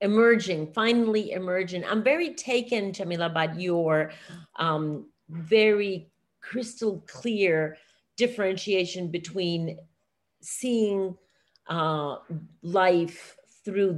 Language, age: English, 40-59